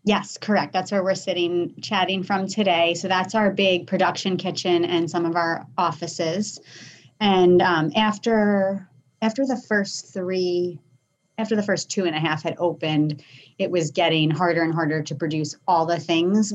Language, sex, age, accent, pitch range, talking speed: English, female, 30-49, American, 160-195 Hz, 170 wpm